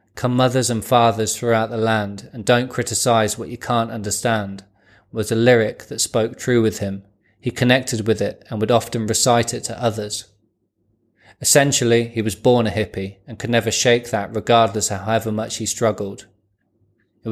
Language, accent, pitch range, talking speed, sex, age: English, British, 105-115 Hz, 175 wpm, male, 20-39